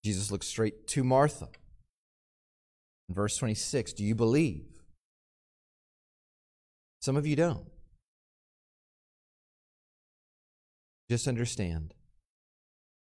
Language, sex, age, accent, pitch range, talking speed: English, male, 40-59, American, 85-120 Hz, 80 wpm